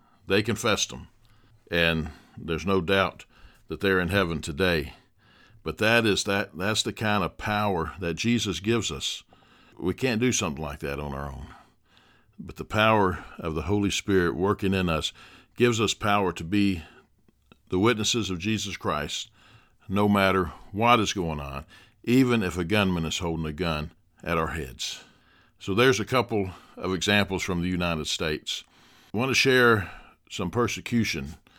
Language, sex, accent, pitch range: English, male, American, 85-105 Hz